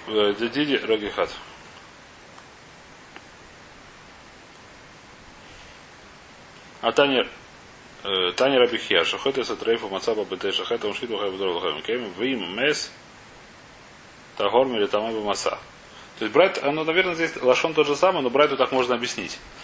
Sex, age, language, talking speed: male, 30-49, Russian, 110 wpm